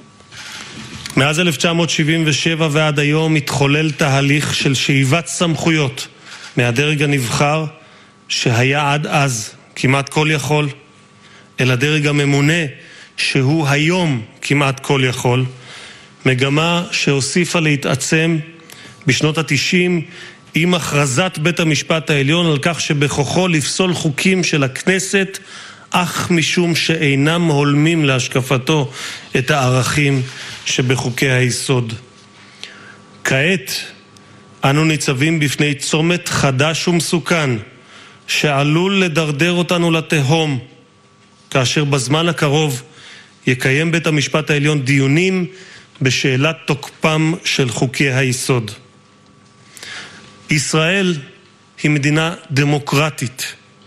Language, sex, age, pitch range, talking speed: Hebrew, male, 30-49, 135-165 Hz, 90 wpm